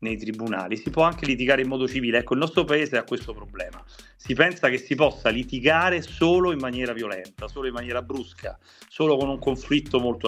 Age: 40-59